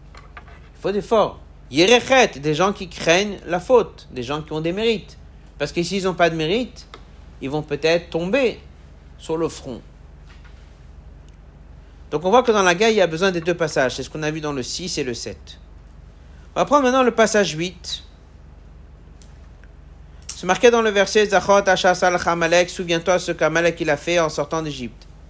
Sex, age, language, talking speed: male, 60-79, French, 190 wpm